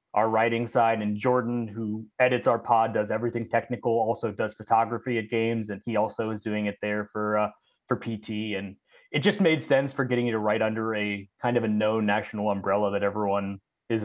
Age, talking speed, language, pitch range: 20-39, 210 wpm, English, 105-125 Hz